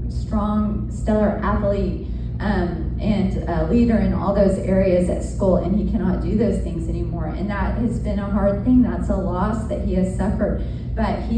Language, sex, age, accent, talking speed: English, female, 30-49, American, 190 wpm